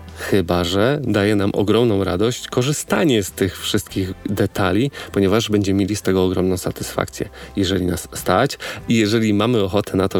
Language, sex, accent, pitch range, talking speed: Polish, male, native, 95-115 Hz, 160 wpm